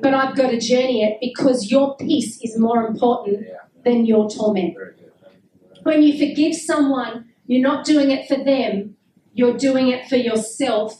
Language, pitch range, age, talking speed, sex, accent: Finnish, 225-270 Hz, 40-59, 165 wpm, female, Australian